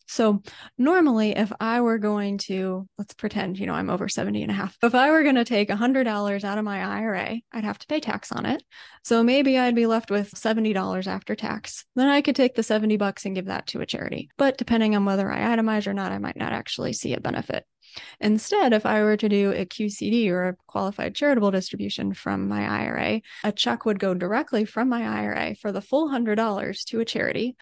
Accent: American